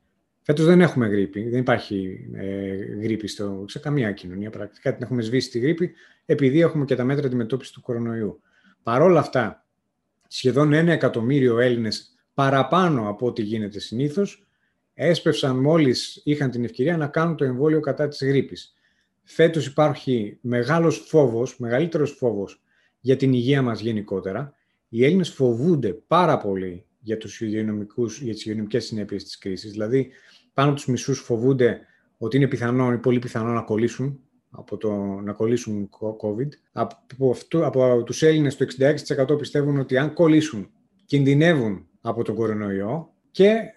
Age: 30-49